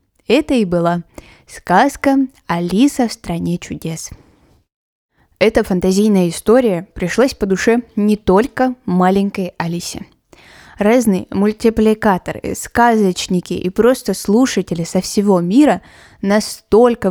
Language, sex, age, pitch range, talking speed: Russian, female, 20-39, 180-235 Hz, 100 wpm